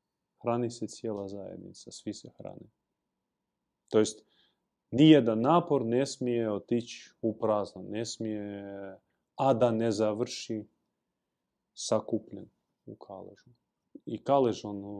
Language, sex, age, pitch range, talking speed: Croatian, male, 30-49, 105-140 Hz, 105 wpm